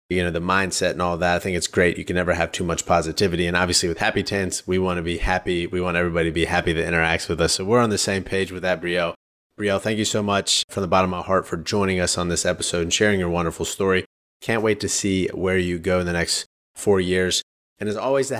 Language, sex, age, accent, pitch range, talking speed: English, male, 30-49, American, 90-110 Hz, 275 wpm